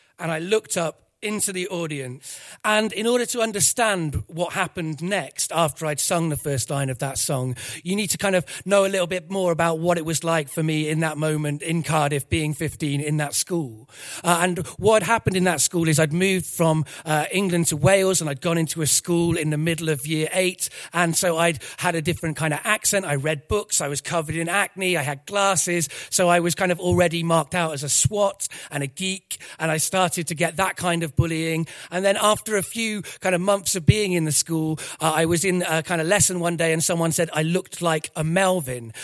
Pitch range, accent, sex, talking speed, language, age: 155-185 Hz, British, male, 235 wpm, English, 40-59